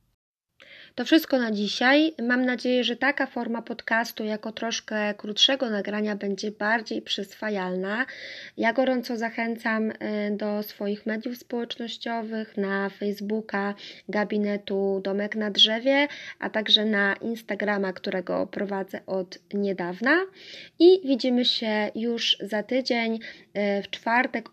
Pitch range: 200-235 Hz